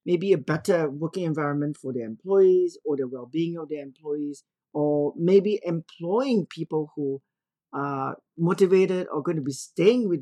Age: 40-59